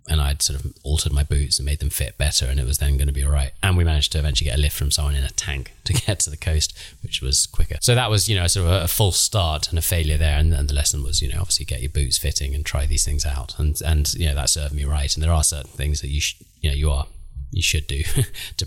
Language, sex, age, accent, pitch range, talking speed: English, male, 30-49, British, 75-90 Hz, 315 wpm